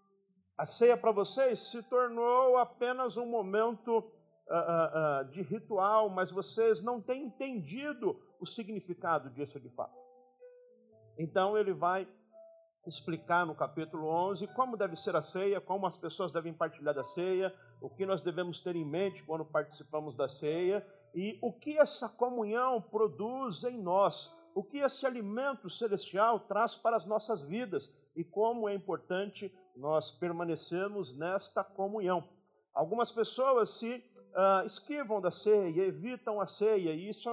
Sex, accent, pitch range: male, Brazilian, 175-230 Hz